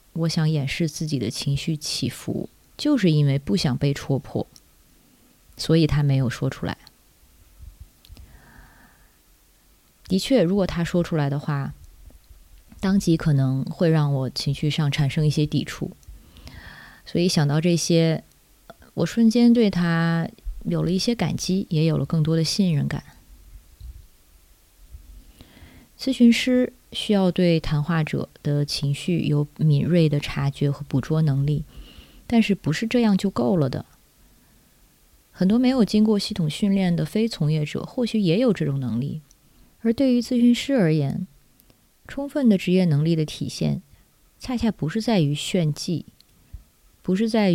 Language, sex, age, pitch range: Chinese, female, 20-39, 140-195 Hz